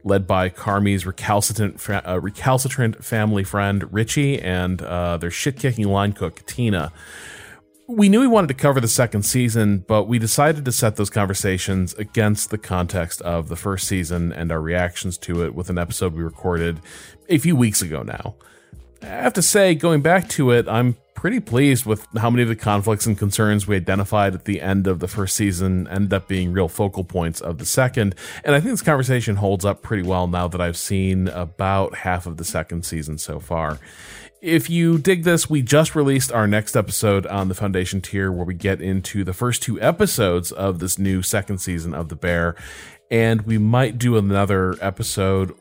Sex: male